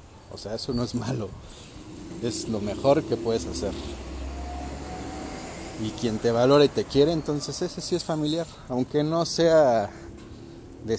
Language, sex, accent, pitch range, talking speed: Spanish, male, Mexican, 90-135 Hz, 155 wpm